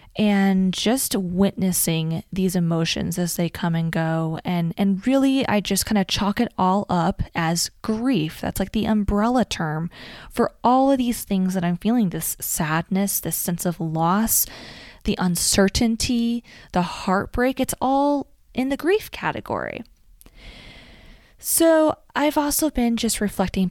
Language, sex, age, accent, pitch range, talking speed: English, female, 20-39, American, 175-215 Hz, 145 wpm